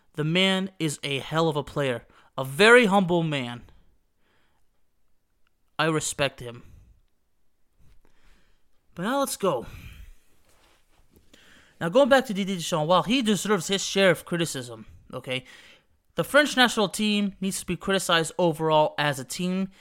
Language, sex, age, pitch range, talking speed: English, male, 20-39, 130-205 Hz, 135 wpm